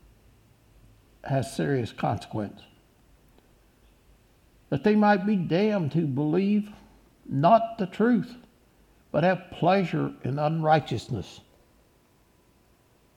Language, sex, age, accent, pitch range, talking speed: English, male, 60-79, American, 130-195 Hz, 80 wpm